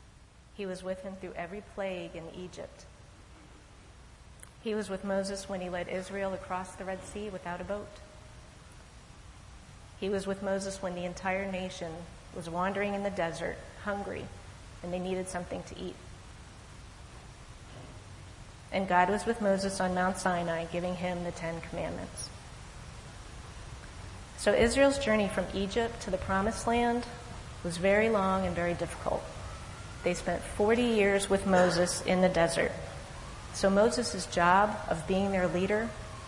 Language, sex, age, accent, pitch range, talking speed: English, female, 30-49, American, 160-195 Hz, 145 wpm